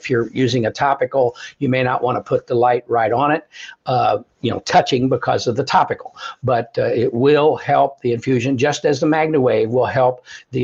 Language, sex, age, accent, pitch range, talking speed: English, male, 60-79, American, 120-140 Hz, 215 wpm